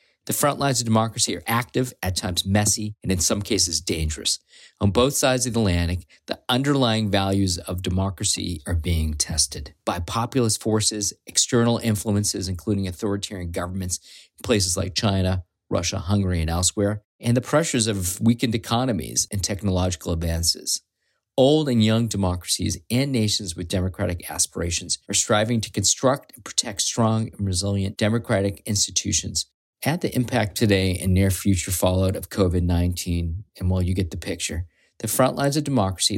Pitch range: 90-110 Hz